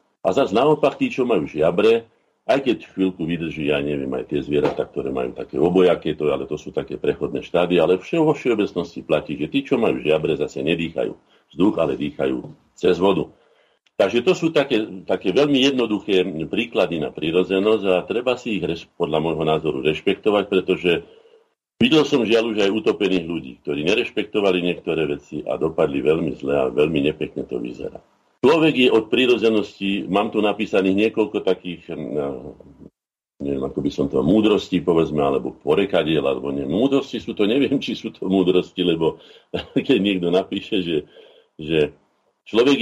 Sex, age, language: male, 50-69, Slovak